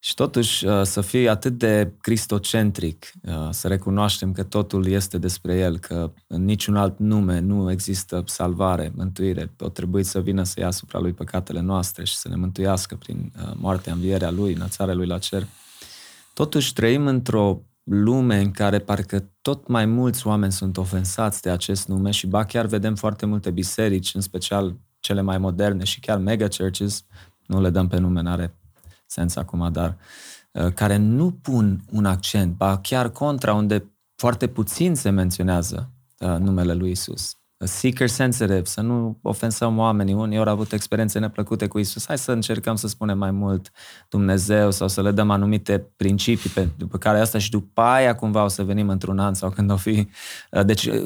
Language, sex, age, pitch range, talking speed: Romanian, male, 20-39, 95-110 Hz, 175 wpm